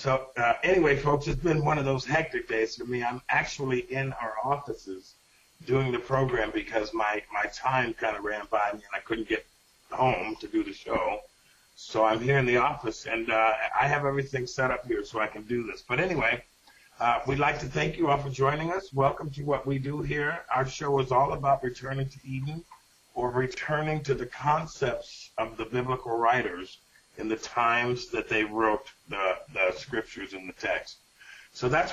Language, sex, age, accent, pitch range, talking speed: English, male, 50-69, American, 115-145 Hz, 200 wpm